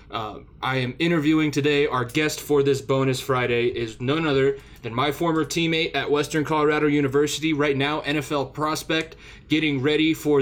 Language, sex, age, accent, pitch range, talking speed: English, male, 20-39, American, 130-150 Hz, 165 wpm